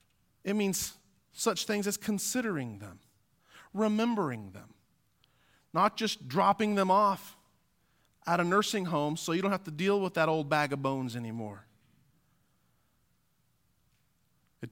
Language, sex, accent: English, male, American